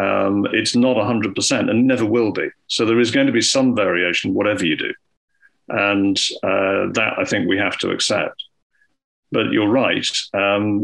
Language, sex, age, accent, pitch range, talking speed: English, male, 50-69, British, 95-115 Hz, 175 wpm